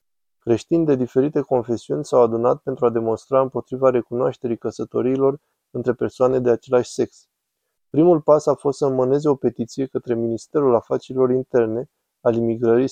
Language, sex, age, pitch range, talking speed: Romanian, male, 20-39, 120-135 Hz, 145 wpm